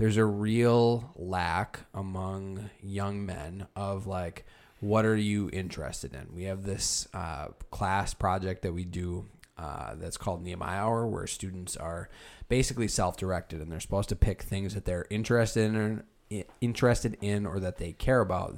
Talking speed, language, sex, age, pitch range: 165 wpm, English, male, 20-39, 90-105 Hz